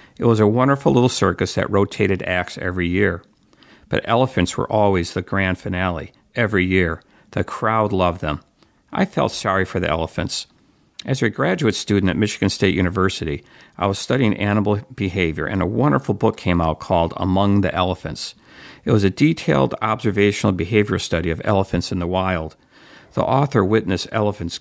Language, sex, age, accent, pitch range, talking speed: English, male, 50-69, American, 90-110 Hz, 170 wpm